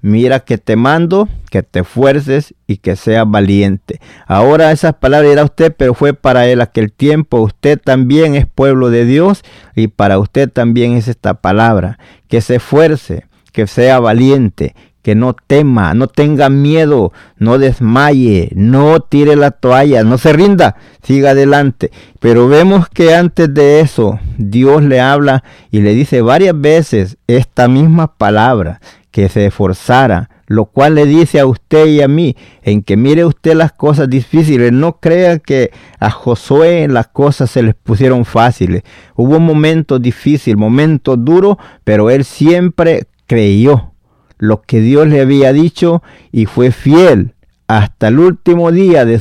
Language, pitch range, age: Spanish, 110-150 Hz, 50-69